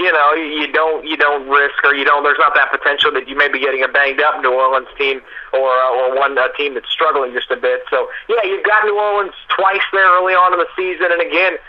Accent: American